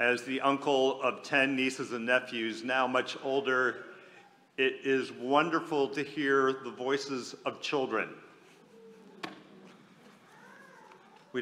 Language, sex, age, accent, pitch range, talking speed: English, male, 50-69, American, 120-150 Hz, 110 wpm